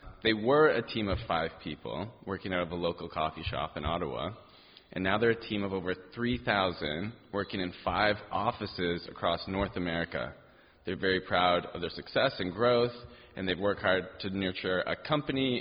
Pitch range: 90-110 Hz